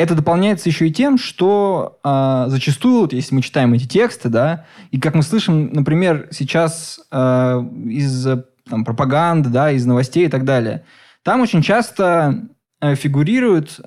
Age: 20-39